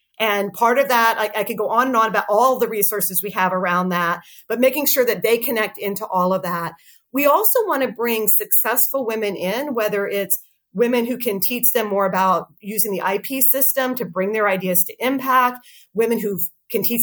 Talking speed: 210 wpm